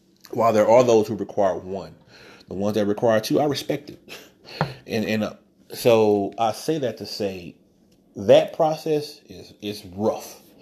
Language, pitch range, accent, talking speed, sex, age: English, 105-120 Hz, American, 165 wpm, male, 30-49